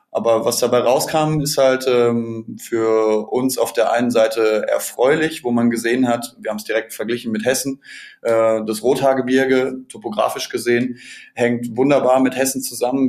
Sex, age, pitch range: male, 20-39, 115-130 Hz